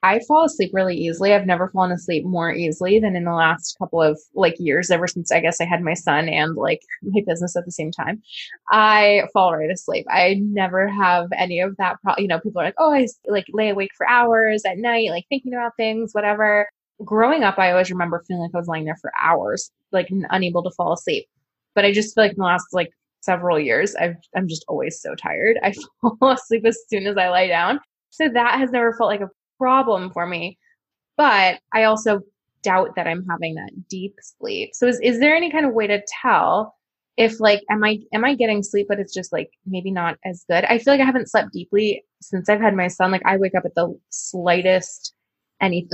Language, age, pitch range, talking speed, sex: English, 20-39, 175-220 Hz, 225 wpm, female